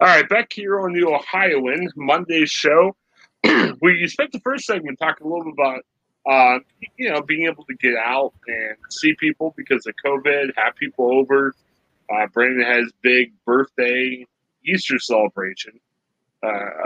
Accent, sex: American, male